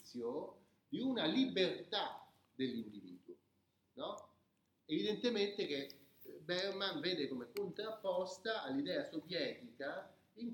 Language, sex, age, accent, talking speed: Italian, male, 40-59, native, 80 wpm